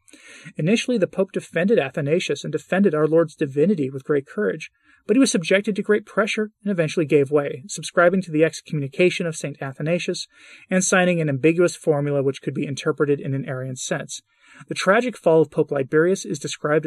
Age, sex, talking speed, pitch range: 30-49, male, 185 wpm, 145-185 Hz